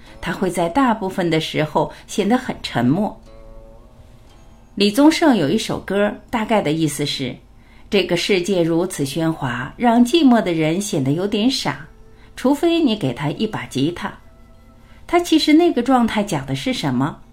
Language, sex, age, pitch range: Chinese, female, 50-69, 150-240 Hz